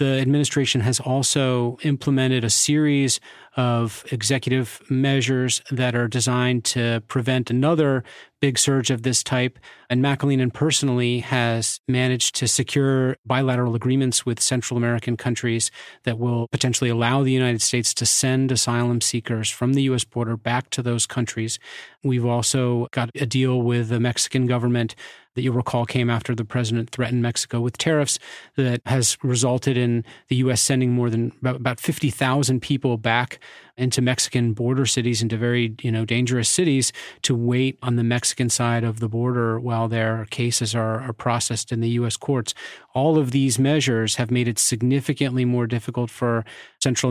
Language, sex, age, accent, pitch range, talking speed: English, male, 40-59, American, 115-130 Hz, 160 wpm